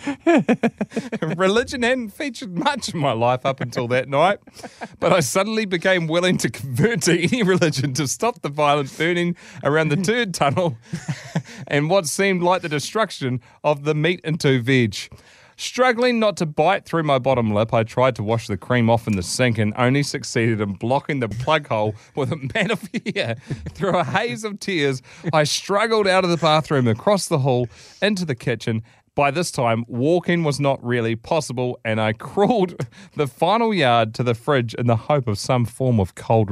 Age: 30-49